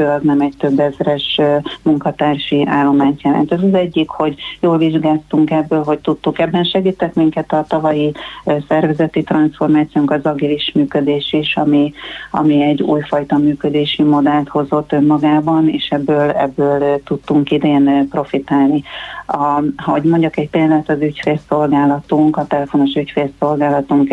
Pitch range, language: 145-160 Hz, Hungarian